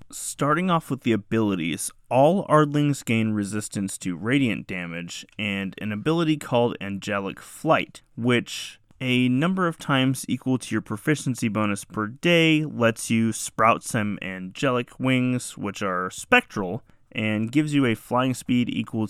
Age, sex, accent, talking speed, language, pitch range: 20-39, male, American, 145 wpm, English, 105-140 Hz